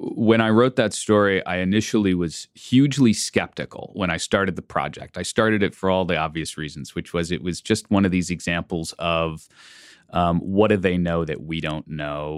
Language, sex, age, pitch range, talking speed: English, male, 30-49, 85-105 Hz, 205 wpm